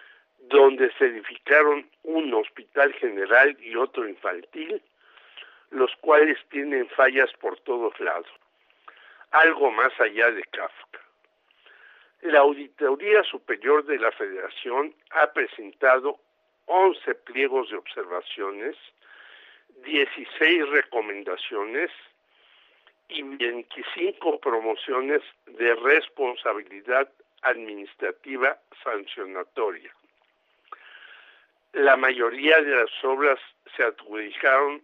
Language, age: Spanish, 60-79